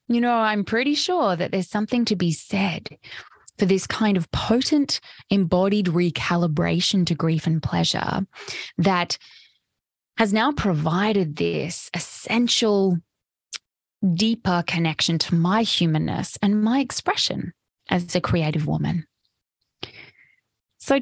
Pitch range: 170-230 Hz